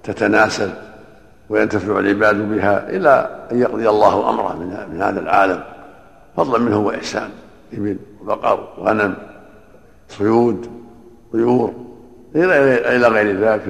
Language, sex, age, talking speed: Arabic, male, 60-79, 110 wpm